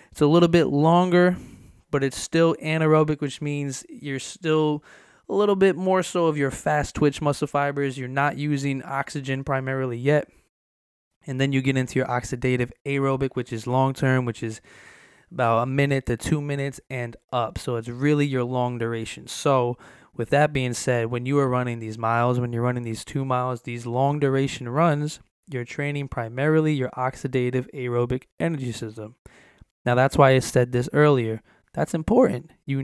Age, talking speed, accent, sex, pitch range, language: 20-39, 175 wpm, American, male, 120-145 Hz, English